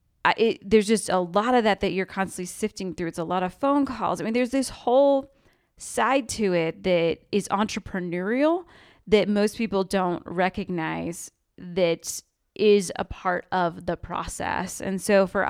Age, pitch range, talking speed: 20-39, 185-235 Hz, 165 wpm